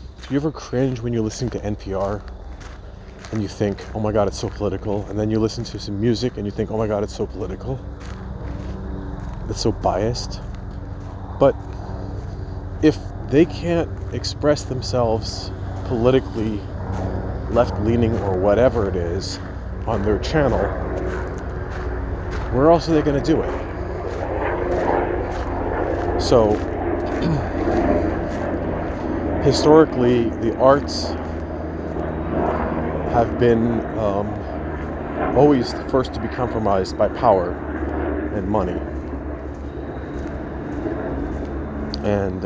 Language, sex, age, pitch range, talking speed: English, male, 40-59, 75-110 Hz, 110 wpm